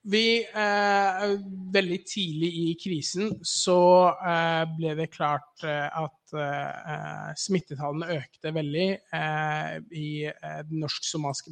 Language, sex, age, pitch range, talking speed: English, male, 20-39, 155-190 Hz, 80 wpm